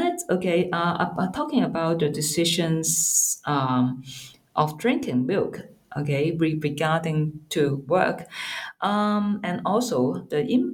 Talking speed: 100 wpm